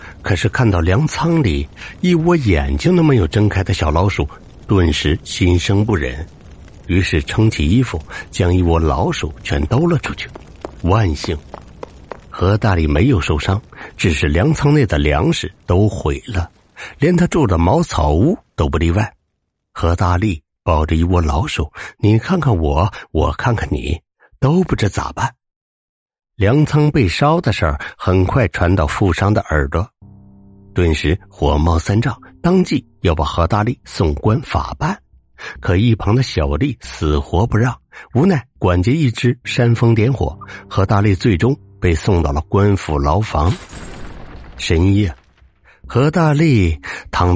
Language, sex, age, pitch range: Chinese, male, 60-79, 80-115 Hz